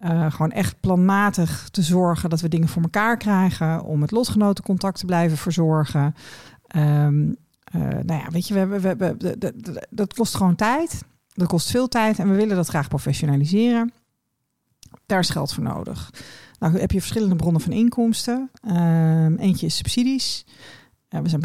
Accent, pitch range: Dutch, 155-195 Hz